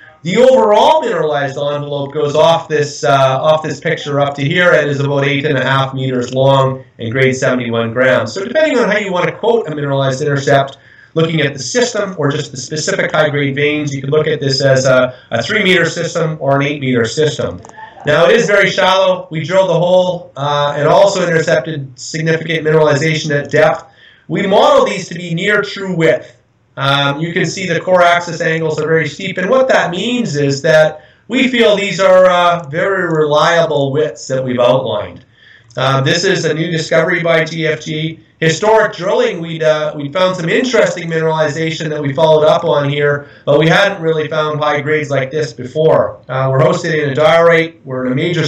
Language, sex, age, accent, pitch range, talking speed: English, male, 30-49, American, 140-170 Hz, 195 wpm